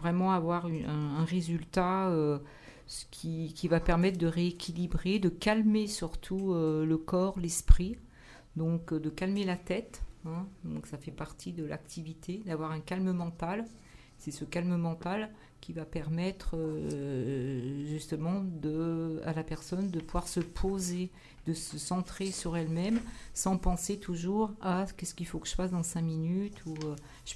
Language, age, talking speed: French, 50-69, 170 wpm